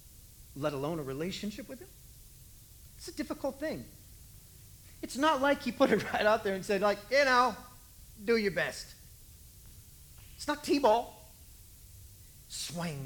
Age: 40-59